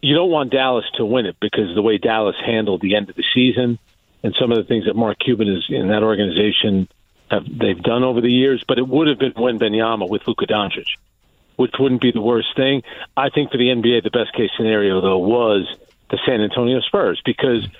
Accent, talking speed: American, 230 wpm